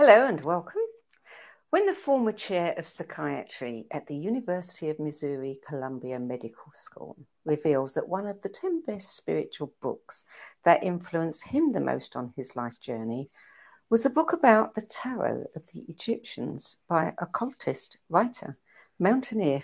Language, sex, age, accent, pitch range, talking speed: English, female, 60-79, British, 145-230 Hz, 145 wpm